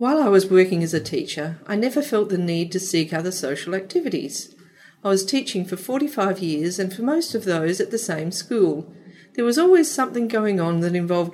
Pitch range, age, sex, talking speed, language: 180-250 Hz, 40-59, female, 210 wpm, English